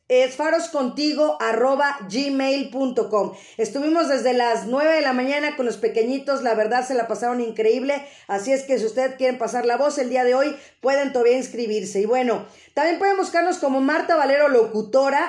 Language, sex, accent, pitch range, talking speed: Spanish, female, Mexican, 230-280 Hz, 170 wpm